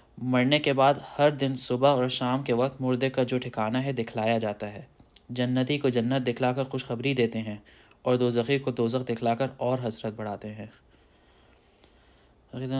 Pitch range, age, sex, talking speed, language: 115-135 Hz, 20-39, male, 180 wpm, Urdu